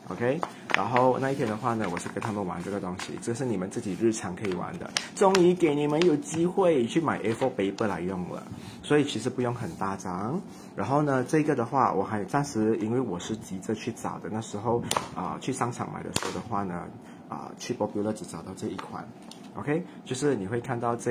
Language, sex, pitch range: Chinese, male, 100-125 Hz